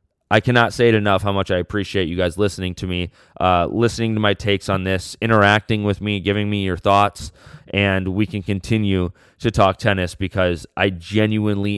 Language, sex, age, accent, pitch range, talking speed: English, male, 20-39, American, 95-110 Hz, 195 wpm